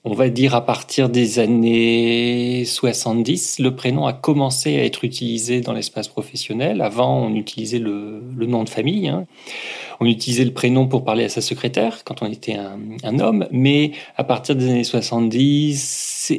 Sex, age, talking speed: male, 40-59, 175 wpm